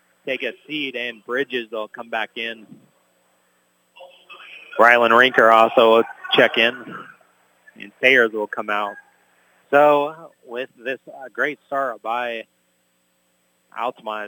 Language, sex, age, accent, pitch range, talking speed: English, male, 30-49, American, 115-165 Hz, 115 wpm